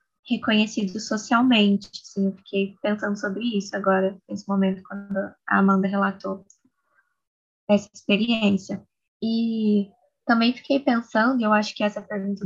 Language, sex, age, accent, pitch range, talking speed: Portuguese, female, 10-29, Brazilian, 205-245 Hz, 125 wpm